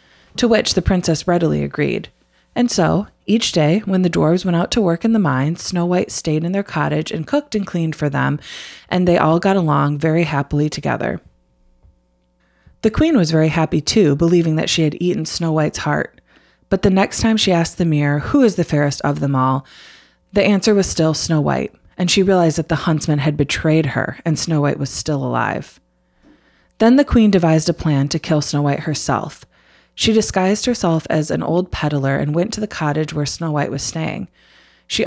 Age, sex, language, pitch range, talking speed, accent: 20-39, female, English, 150-185 Hz, 205 wpm, American